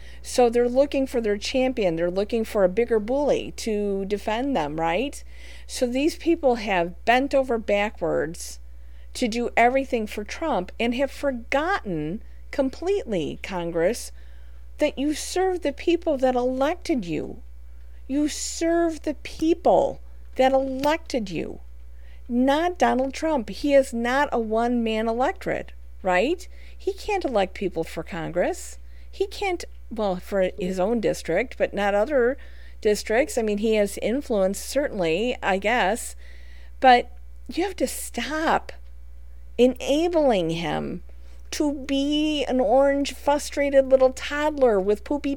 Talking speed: 130 wpm